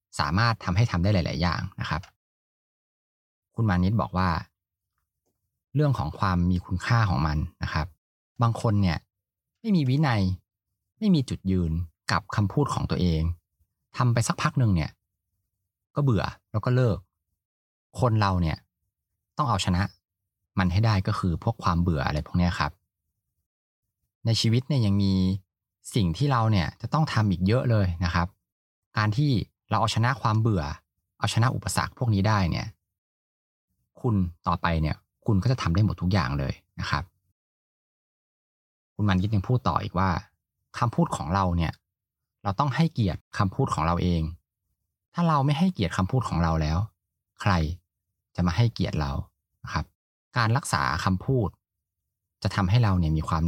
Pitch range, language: 85-115 Hz, Thai